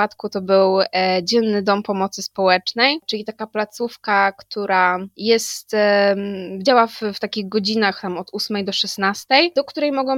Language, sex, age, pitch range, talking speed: Polish, female, 20-39, 195-240 Hz, 155 wpm